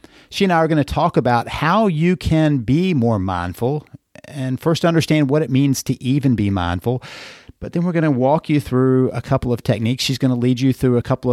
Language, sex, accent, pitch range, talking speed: English, male, American, 120-150 Hz, 235 wpm